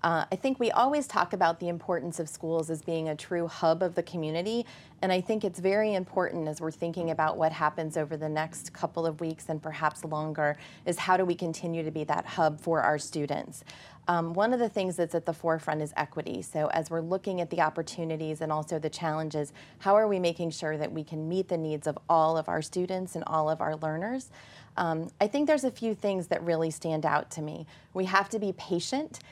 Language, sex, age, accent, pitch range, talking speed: English, female, 30-49, American, 155-180 Hz, 230 wpm